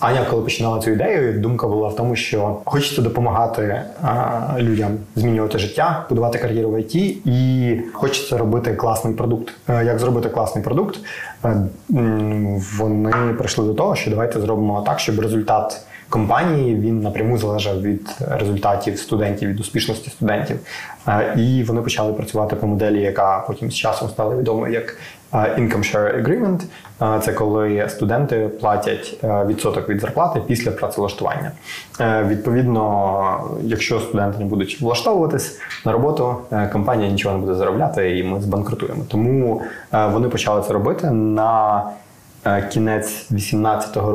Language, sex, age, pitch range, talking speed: Ukrainian, male, 20-39, 105-115 Hz, 135 wpm